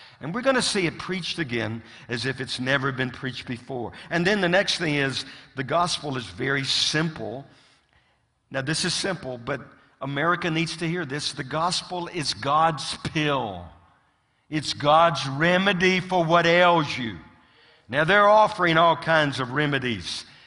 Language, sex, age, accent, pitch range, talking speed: English, male, 50-69, American, 115-165 Hz, 160 wpm